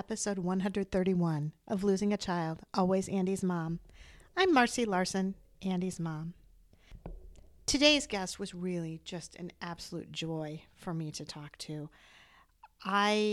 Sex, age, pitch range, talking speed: female, 40-59, 175-220 Hz, 125 wpm